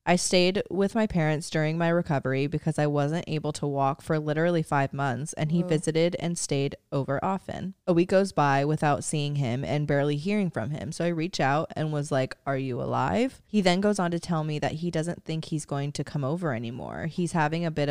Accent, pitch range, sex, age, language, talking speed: American, 145-170 Hz, female, 20-39, English, 230 wpm